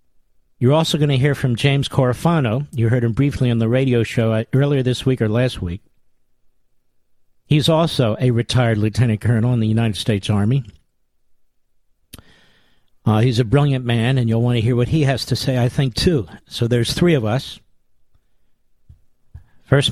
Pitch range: 115-135 Hz